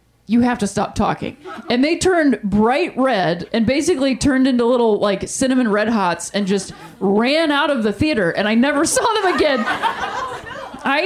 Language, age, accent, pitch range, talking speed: English, 30-49, American, 190-255 Hz, 180 wpm